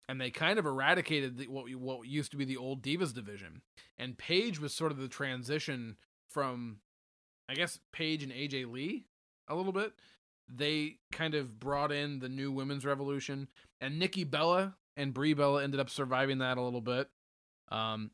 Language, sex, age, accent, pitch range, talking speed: English, male, 20-39, American, 120-150 Hz, 185 wpm